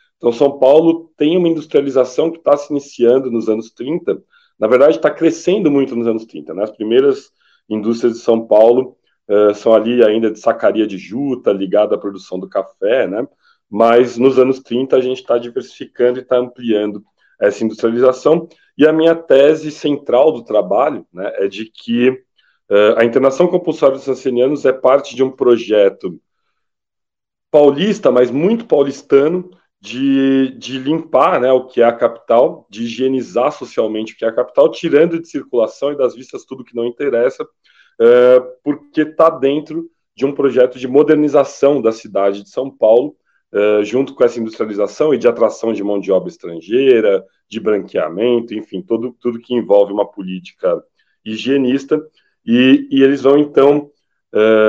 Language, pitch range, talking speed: Portuguese, 115-155 Hz, 160 wpm